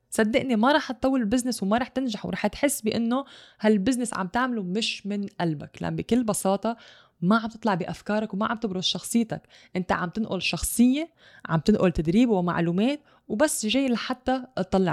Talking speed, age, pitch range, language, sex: 160 wpm, 20-39, 185-245 Hz, English, female